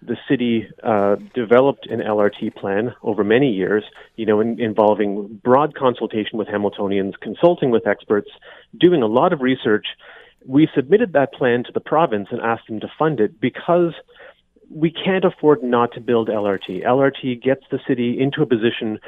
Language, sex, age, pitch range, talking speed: English, male, 30-49, 110-140 Hz, 165 wpm